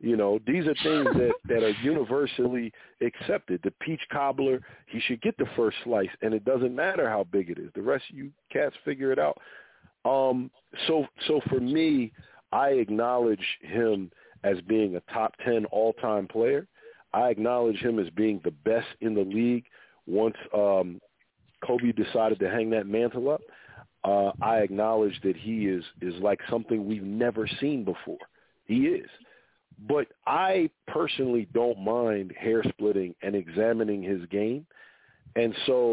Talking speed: 160 wpm